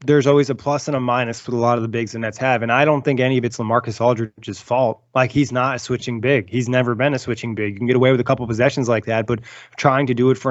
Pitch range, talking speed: 120-135 Hz, 310 wpm